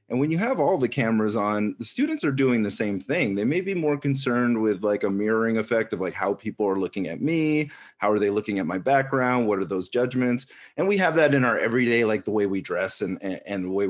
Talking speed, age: 265 wpm, 30-49